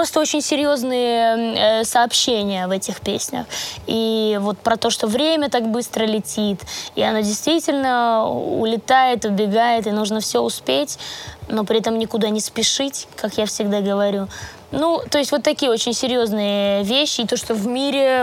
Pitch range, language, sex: 200-245 Hz, Russian, female